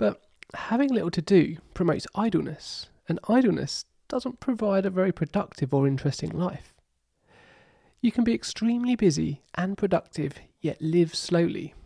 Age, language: 30-49, English